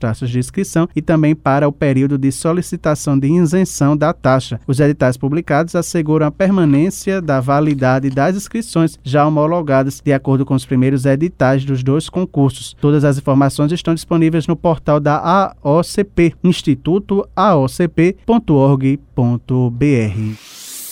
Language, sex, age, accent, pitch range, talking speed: Portuguese, male, 20-39, Brazilian, 135-175 Hz, 130 wpm